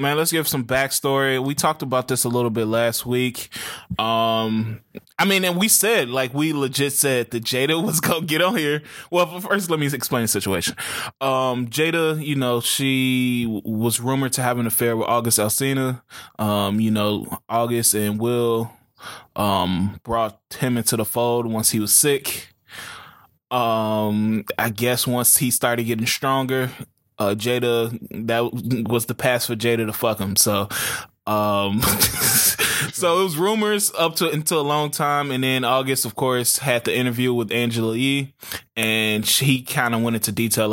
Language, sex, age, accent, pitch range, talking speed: English, male, 20-39, American, 105-135 Hz, 170 wpm